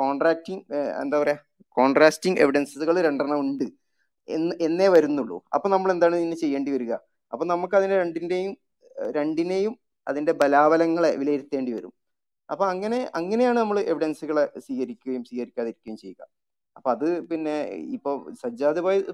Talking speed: 115 wpm